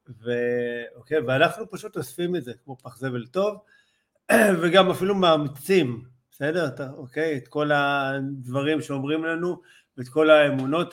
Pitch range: 130-165 Hz